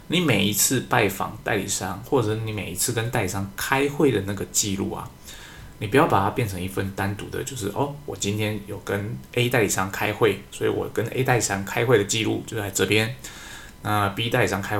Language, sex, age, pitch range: Chinese, male, 20-39, 100-125 Hz